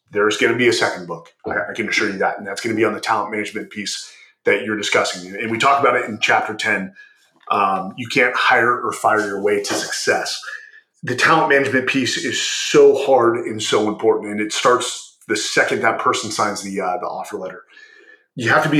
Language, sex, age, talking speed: English, male, 30-49, 225 wpm